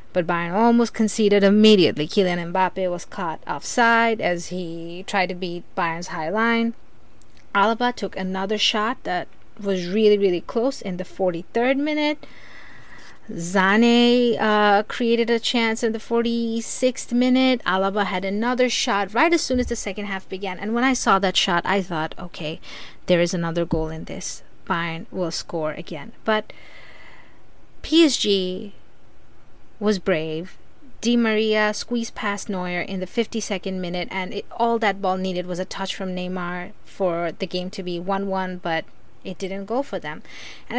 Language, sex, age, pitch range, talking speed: English, female, 30-49, 180-230 Hz, 160 wpm